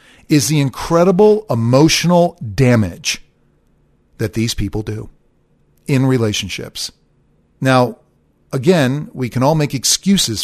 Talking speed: 105 wpm